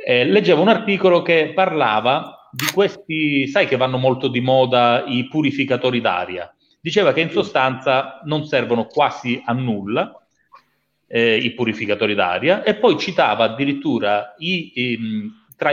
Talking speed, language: 140 wpm, Italian